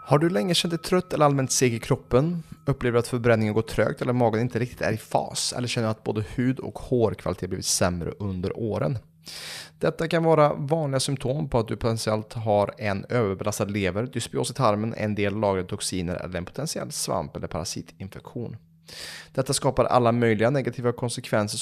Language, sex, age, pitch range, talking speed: Swedish, male, 20-39, 100-135 Hz, 185 wpm